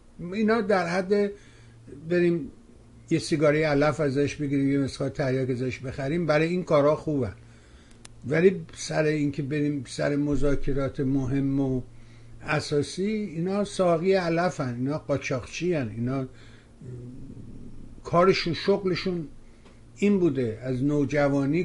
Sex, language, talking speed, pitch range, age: male, Persian, 115 wpm, 125-170 Hz, 60-79